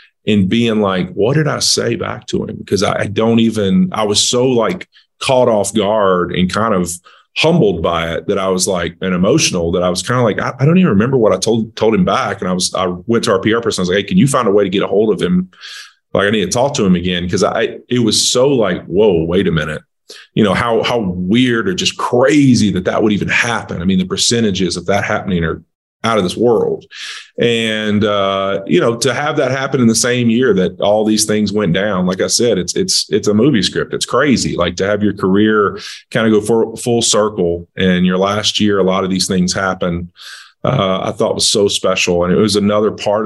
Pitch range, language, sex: 95-115 Hz, English, male